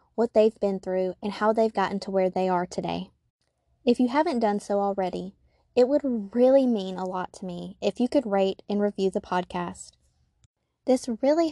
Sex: female